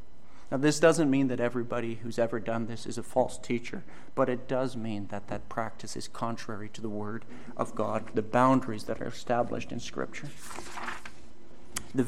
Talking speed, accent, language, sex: 180 wpm, American, English, male